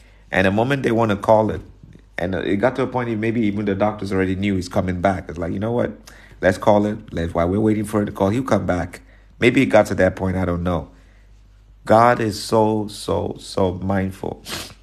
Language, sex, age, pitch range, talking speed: English, male, 50-69, 95-105 Hz, 235 wpm